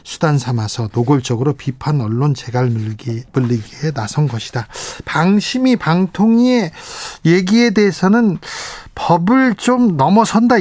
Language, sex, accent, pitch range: Korean, male, native, 125-165 Hz